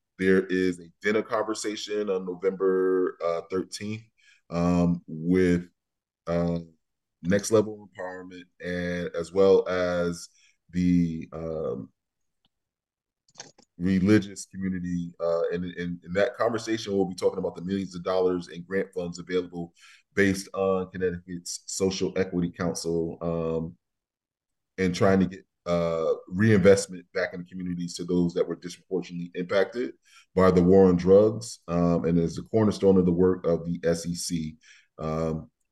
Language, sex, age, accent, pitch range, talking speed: English, male, 20-39, American, 85-95 Hz, 135 wpm